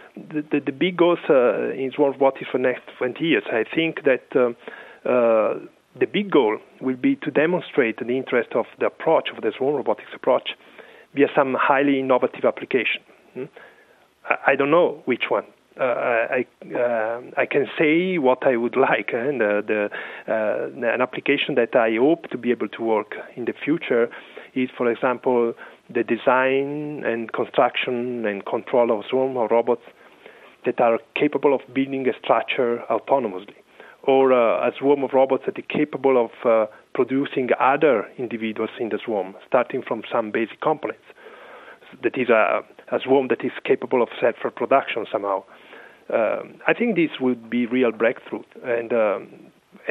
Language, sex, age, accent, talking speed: English, male, 40-59, Italian, 170 wpm